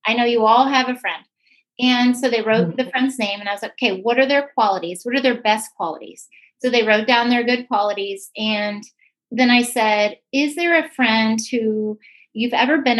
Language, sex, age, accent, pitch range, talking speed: English, female, 30-49, American, 205-250 Hz, 215 wpm